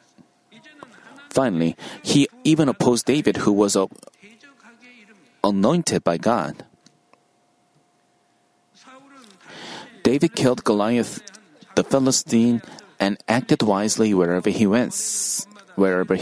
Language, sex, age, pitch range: Korean, male, 30-49, 110-155 Hz